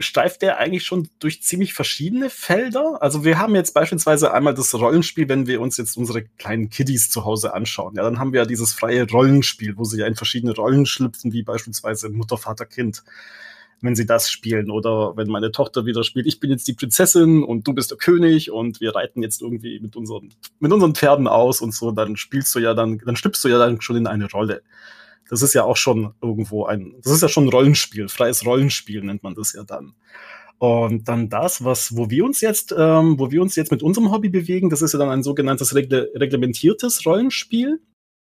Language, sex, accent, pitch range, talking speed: German, male, German, 115-160 Hz, 220 wpm